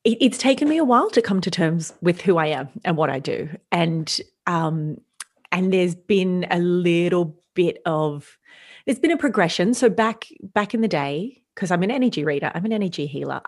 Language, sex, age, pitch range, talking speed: English, female, 30-49, 165-220 Hz, 205 wpm